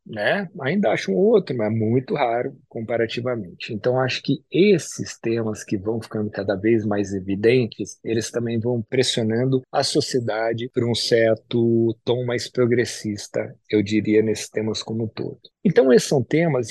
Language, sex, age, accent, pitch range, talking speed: Portuguese, male, 40-59, Brazilian, 110-135 Hz, 160 wpm